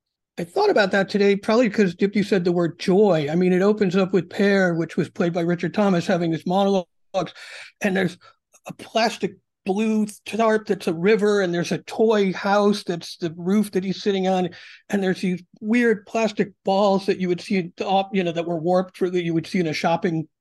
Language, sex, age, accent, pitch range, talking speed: English, male, 50-69, American, 170-205 Hz, 210 wpm